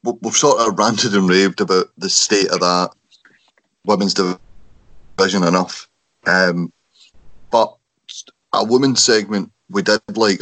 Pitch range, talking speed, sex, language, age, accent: 95-105 Hz, 125 wpm, male, English, 30-49, British